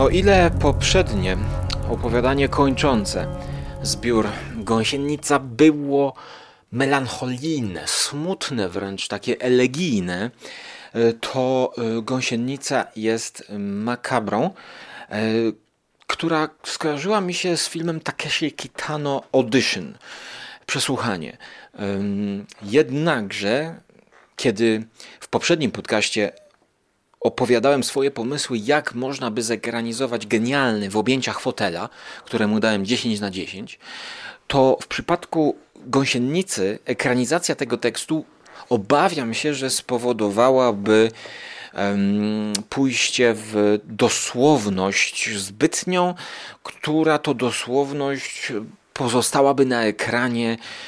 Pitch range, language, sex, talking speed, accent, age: 110-140 Hz, Polish, male, 80 wpm, native, 40-59